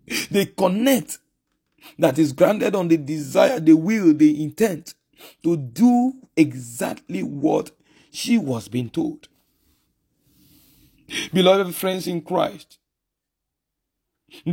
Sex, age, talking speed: male, 50-69, 105 wpm